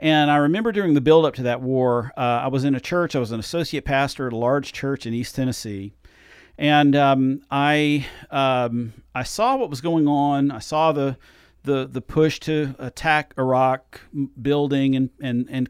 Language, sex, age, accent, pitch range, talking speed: English, male, 40-59, American, 120-145 Hz, 190 wpm